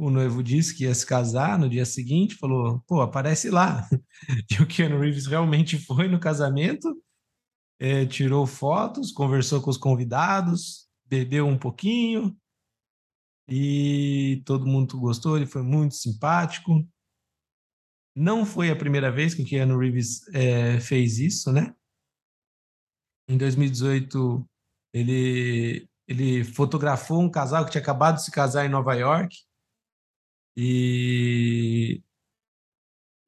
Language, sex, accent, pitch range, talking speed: Portuguese, male, Brazilian, 125-165 Hz, 125 wpm